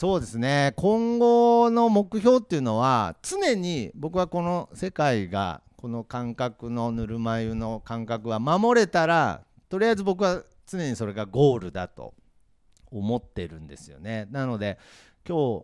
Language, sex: Japanese, male